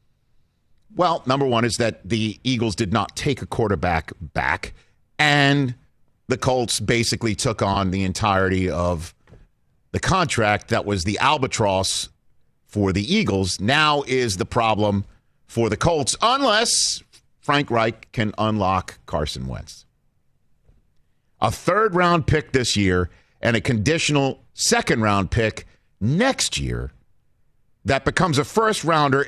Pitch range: 105-145 Hz